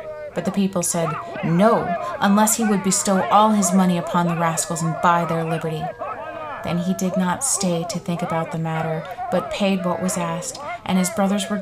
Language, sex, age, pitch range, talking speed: English, female, 30-49, 170-205 Hz, 195 wpm